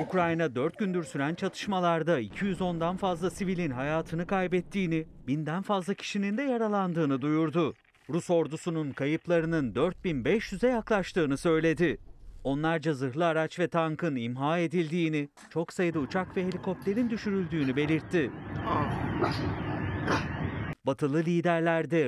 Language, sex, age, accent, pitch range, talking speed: Turkish, male, 40-59, native, 155-180 Hz, 105 wpm